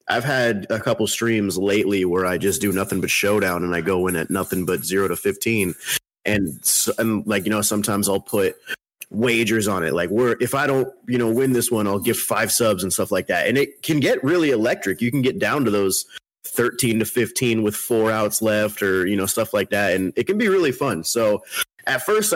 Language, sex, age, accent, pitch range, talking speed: English, male, 30-49, American, 105-130 Hz, 235 wpm